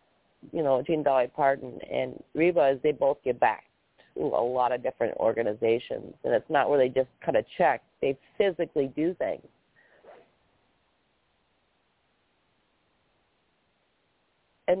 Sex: female